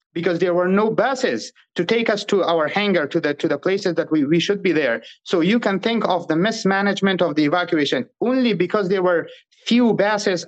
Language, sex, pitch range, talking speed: English, male, 165-200 Hz, 220 wpm